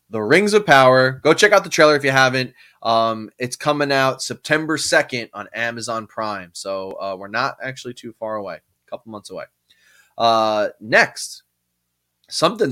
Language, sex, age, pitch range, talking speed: English, male, 20-39, 115-155 Hz, 170 wpm